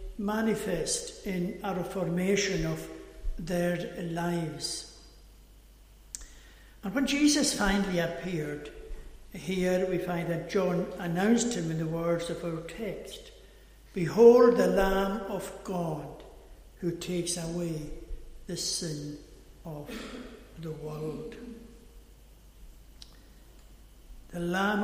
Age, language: 60-79, English